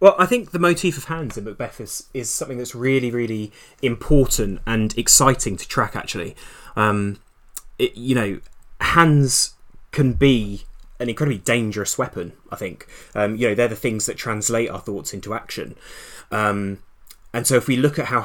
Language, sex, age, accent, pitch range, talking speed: English, male, 20-39, British, 100-125 Hz, 175 wpm